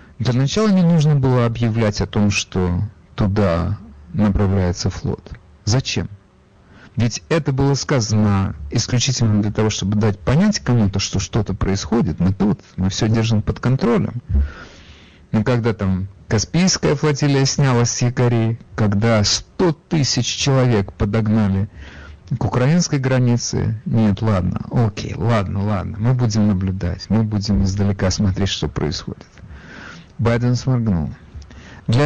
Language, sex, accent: Russian, male, native